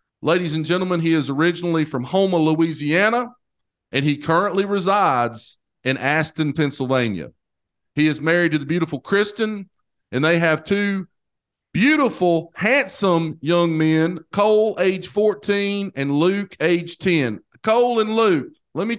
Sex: male